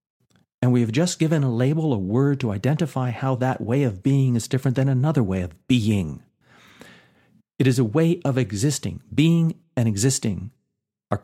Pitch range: 100-135 Hz